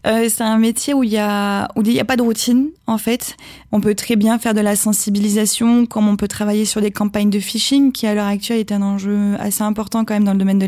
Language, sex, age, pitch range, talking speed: French, female, 20-39, 200-225 Hz, 260 wpm